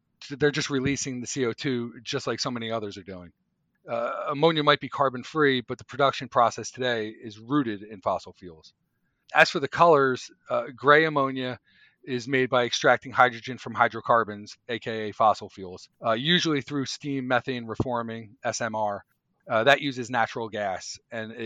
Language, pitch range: English, 115-135 Hz